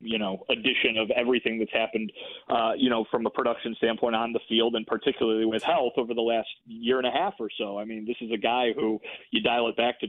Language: English